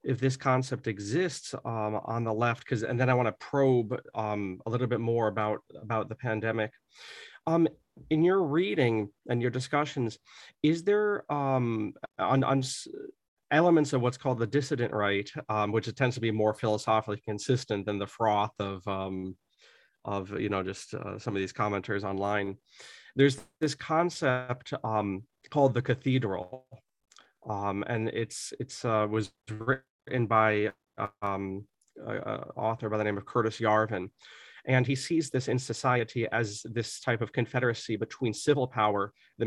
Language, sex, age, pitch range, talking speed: English, male, 30-49, 110-130 Hz, 165 wpm